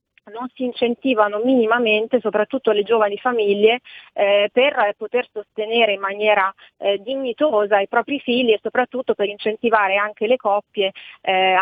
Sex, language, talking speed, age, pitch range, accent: female, Italian, 140 wpm, 30-49, 200-230 Hz, native